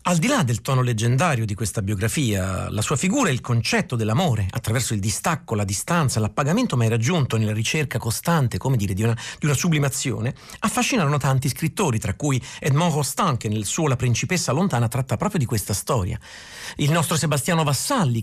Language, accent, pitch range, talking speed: Italian, native, 115-165 Hz, 180 wpm